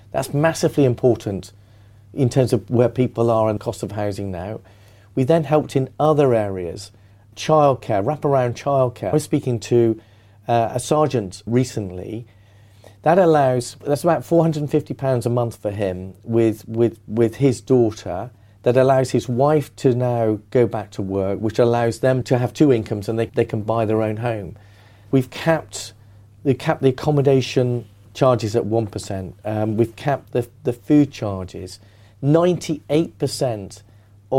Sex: male